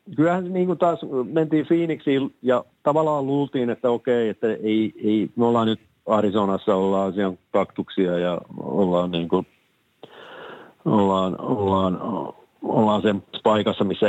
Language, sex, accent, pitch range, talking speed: Finnish, male, native, 95-115 Hz, 130 wpm